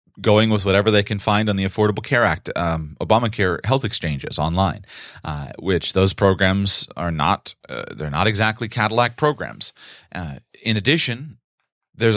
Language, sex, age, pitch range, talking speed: English, male, 30-49, 95-115 Hz, 155 wpm